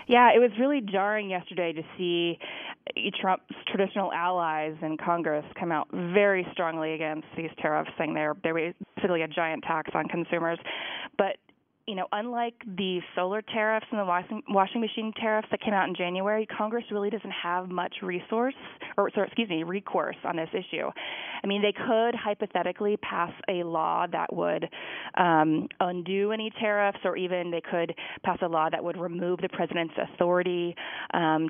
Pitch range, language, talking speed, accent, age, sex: 170-205 Hz, English, 165 wpm, American, 20-39, female